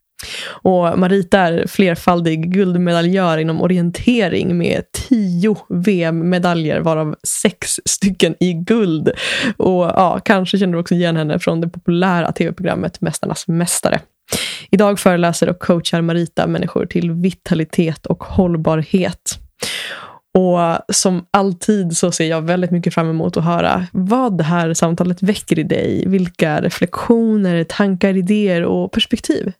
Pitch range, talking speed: 170-200 Hz, 130 wpm